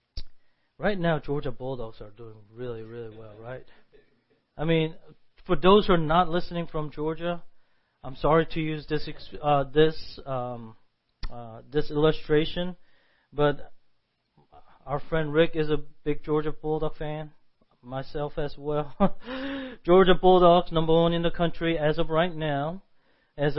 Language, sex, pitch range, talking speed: English, male, 145-190 Hz, 140 wpm